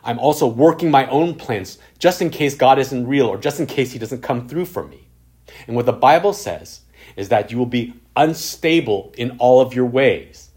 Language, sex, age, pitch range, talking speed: English, male, 30-49, 105-145 Hz, 215 wpm